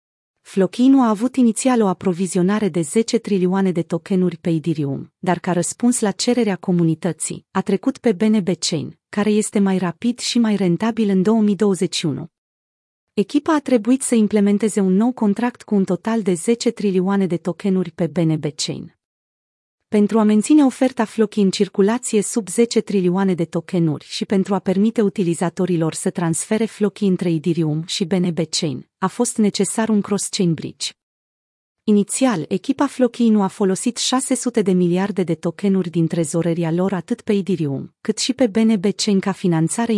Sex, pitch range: female, 175-220 Hz